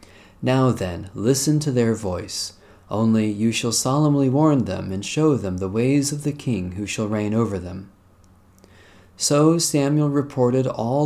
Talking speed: 155 wpm